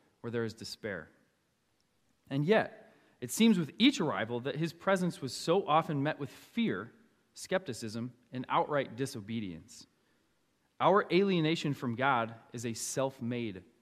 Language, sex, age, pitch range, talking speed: English, male, 20-39, 120-165 Hz, 135 wpm